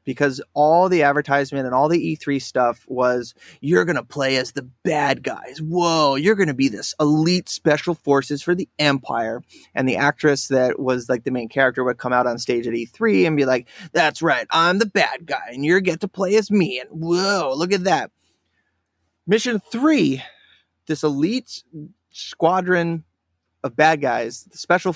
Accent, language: American, English